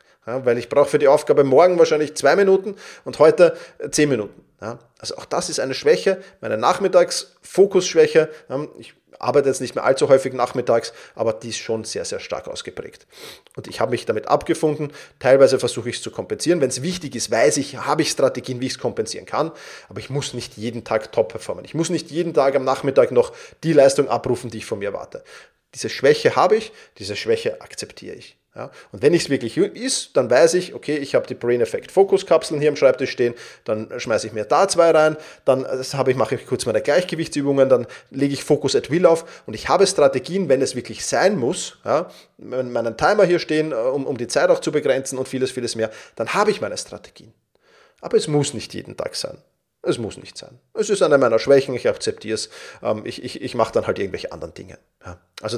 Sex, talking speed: male, 215 wpm